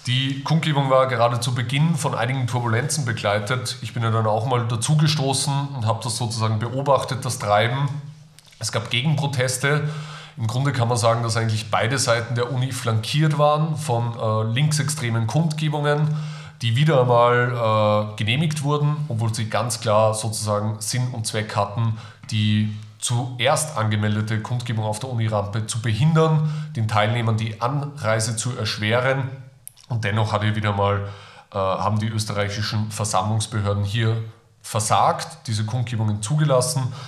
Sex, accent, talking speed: male, German, 145 wpm